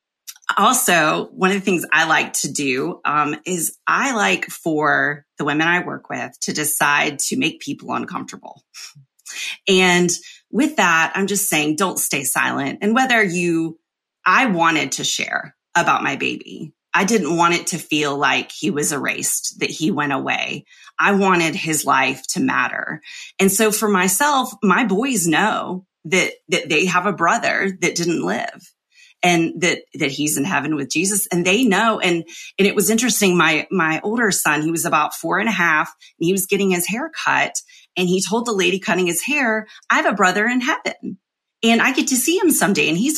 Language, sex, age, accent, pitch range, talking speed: English, female, 30-49, American, 170-225 Hz, 190 wpm